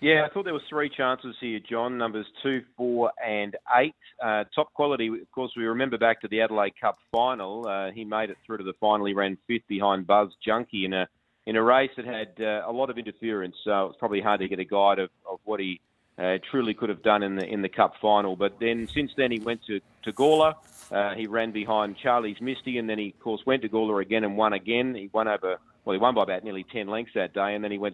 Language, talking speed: English, 260 wpm